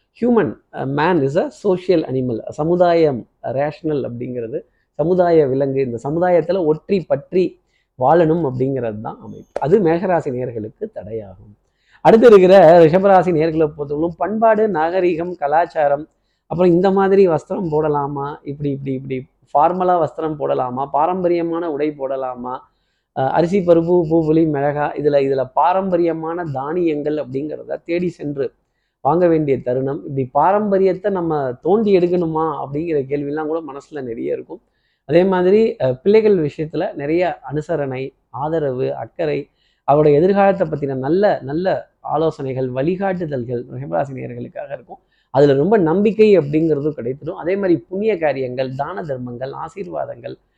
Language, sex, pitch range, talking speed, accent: Tamil, male, 140-180 Hz, 115 wpm, native